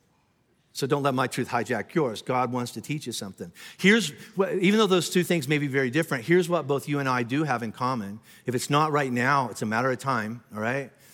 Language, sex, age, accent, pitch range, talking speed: English, male, 50-69, American, 125-145 Hz, 240 wpm